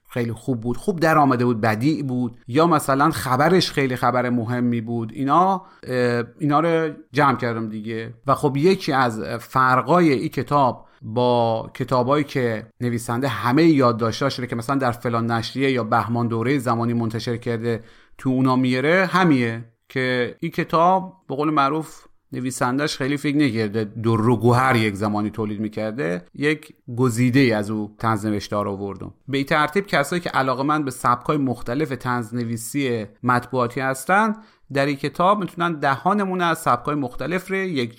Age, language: 30-49, Persian